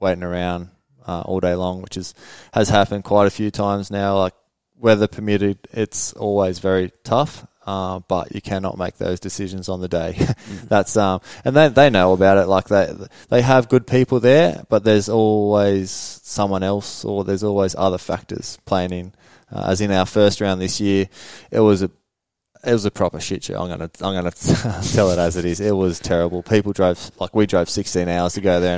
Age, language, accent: 20-39, English, Australian